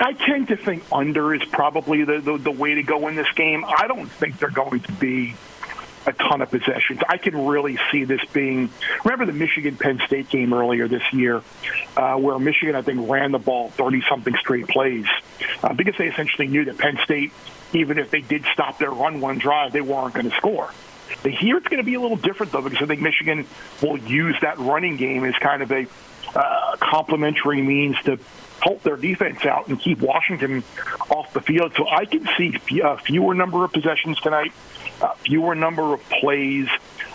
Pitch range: 135-160 Hz